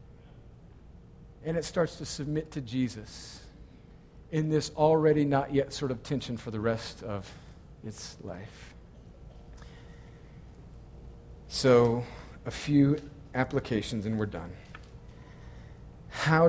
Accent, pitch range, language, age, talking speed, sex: American, 110-150 Hz, English, 40-59, 105 wpm, male